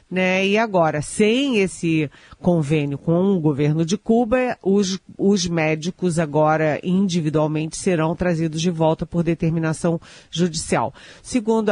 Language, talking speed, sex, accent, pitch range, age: Portuguese, 125 wpm, female, Brazilian, 160-200 Hz, 50-69